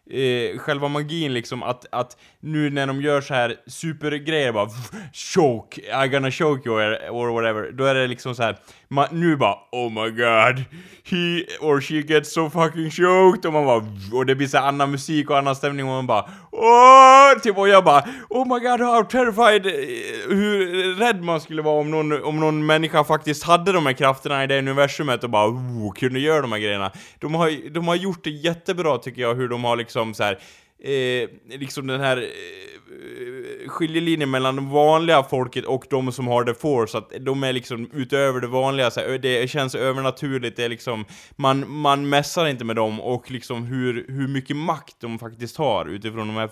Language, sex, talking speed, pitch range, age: Swedish, male, 195 wpm, 120-160 Hz, 20-39